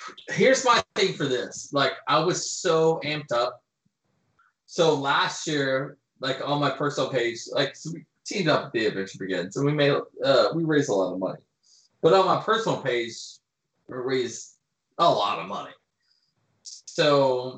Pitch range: 120-160 Hz